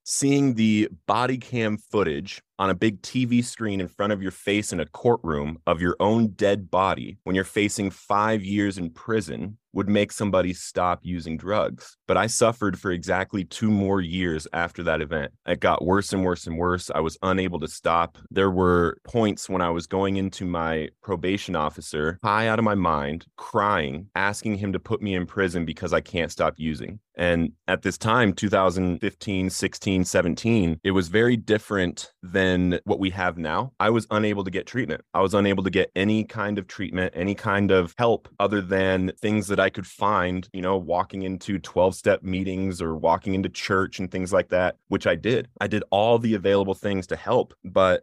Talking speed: 195 wpm